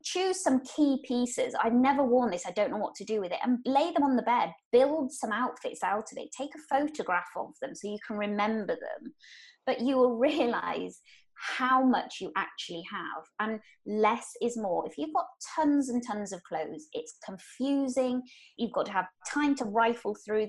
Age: 20-39